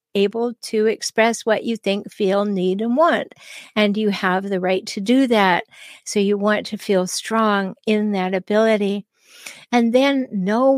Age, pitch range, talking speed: 60-79, 210-260 Hz, 165 wpm